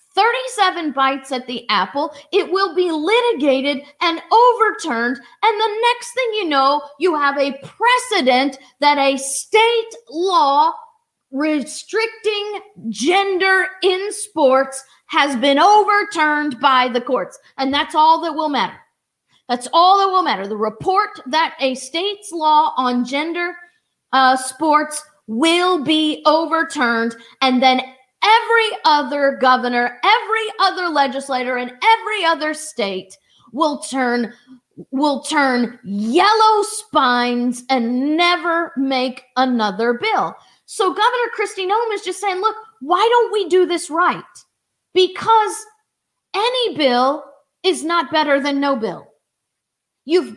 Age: 40-59